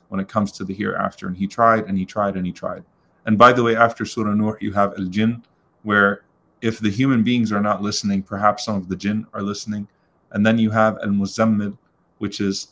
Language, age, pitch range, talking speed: English, 30-49, 100-110 Hz, 220 wpm